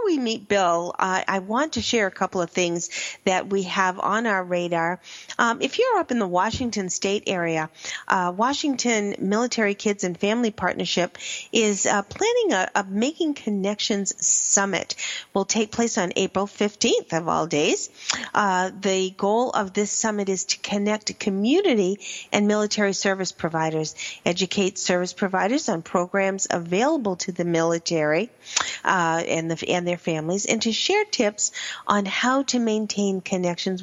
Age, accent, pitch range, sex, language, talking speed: 40-59, American, 185-230 Hz, female, English, 155 wpm